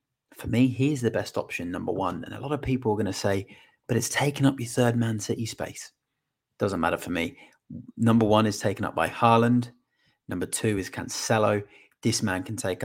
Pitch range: 95-120 Hz